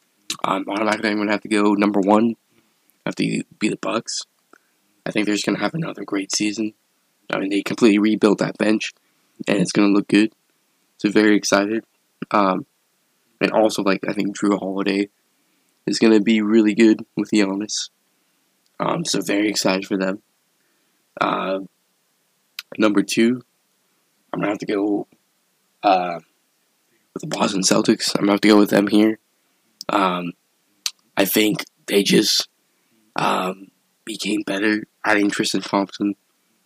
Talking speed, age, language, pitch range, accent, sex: 160 wpm, 20-39, English, 100-105 Hz, American, male